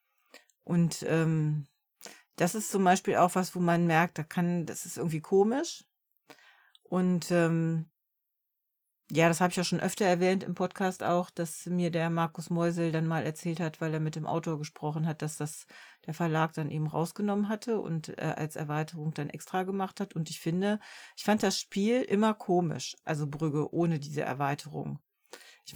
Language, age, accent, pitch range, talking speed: German, 40-59, German, 165-210 Hz, 180 wpm